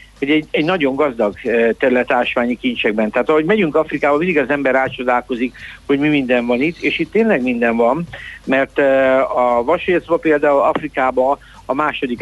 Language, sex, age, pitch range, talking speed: Hungarian, male, 60-79, 125-150 Hz, 150 wpm